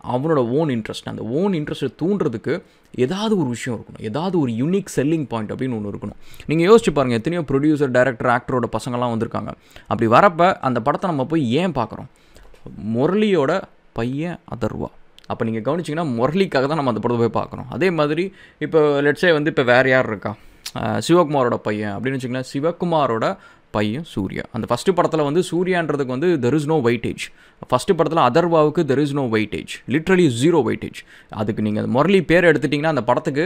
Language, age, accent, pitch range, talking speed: English, 20-39, Indian, 120-165 Hz, 130 wpm